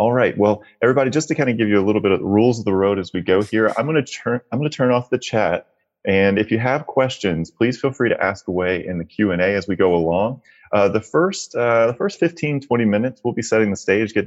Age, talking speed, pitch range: 30-49, 285 wpm, 90-110 Hz